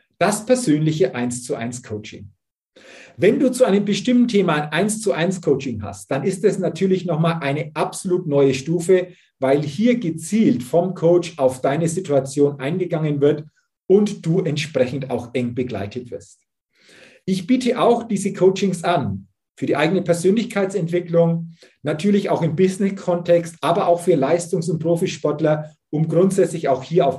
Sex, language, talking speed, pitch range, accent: male, German, 140 wpm, 150-200 Hz, German